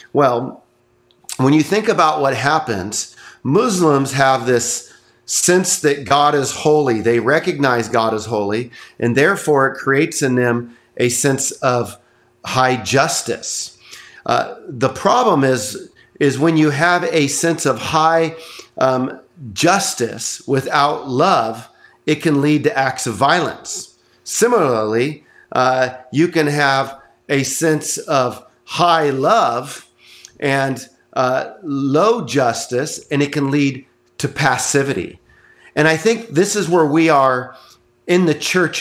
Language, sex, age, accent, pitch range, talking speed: English, male, 40-59, American, 130-160 Hz, 130 wpm